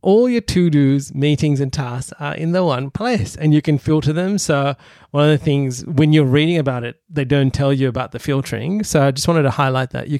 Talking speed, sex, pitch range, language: 240 wpm, male, 130-170 Hz, English